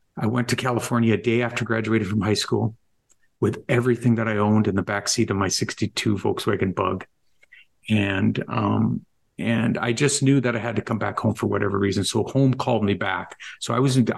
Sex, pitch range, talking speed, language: male, 105-125 Hz, 205 wpm, English